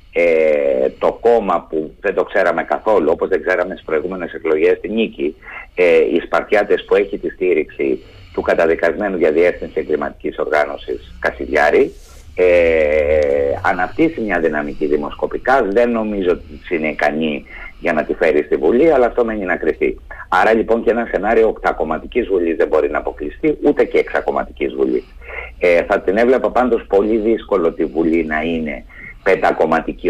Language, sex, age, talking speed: Greek, male, 60-79, 150 wpm